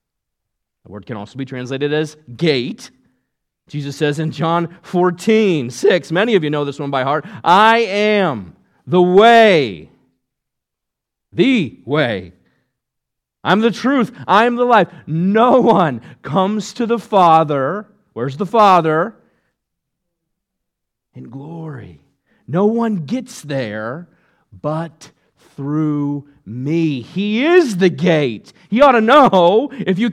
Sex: male